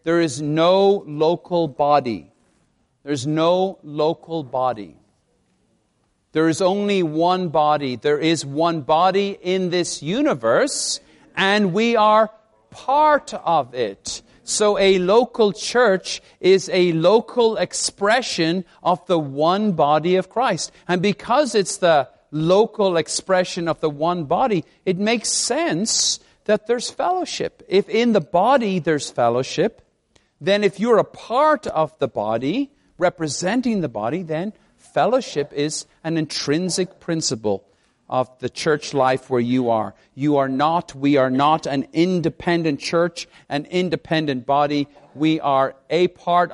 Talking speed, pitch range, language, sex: 135 wpm, 145-195 Hz, English, male